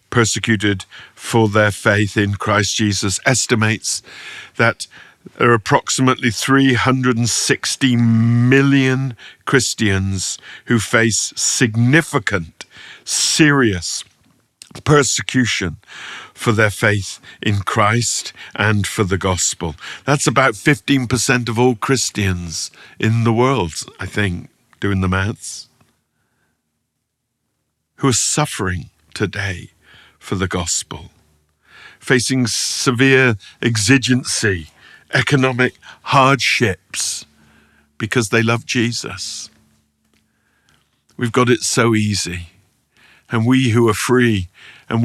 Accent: British